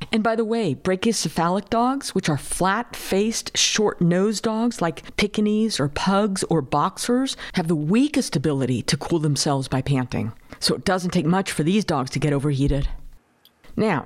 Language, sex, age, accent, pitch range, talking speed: English, female, 50-69, American, 160-220 Hz, 160 wpm